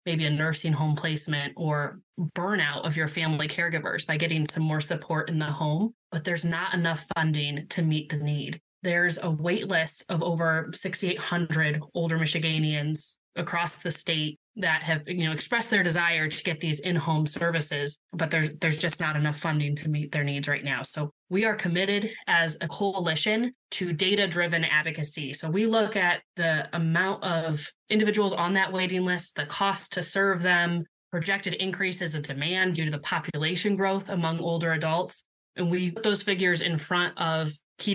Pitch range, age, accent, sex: 155-180 Hz, 20-39, American, female